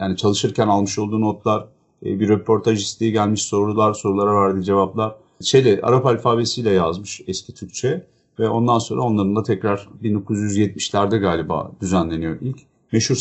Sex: male